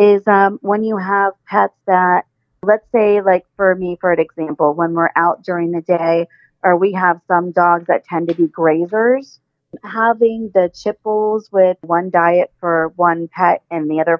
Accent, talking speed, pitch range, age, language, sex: American, 185 wpm, 170-200 Hz, 40-59, English, female